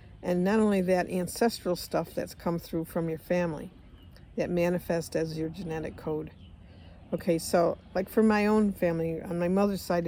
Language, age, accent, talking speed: English, 60-79, American, 175 wpm